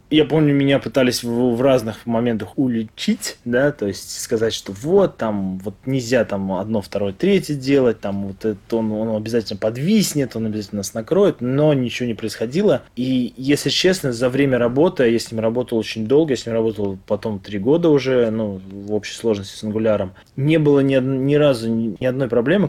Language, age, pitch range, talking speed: Russian, 20-39, 105-130 Hz, 190 wpm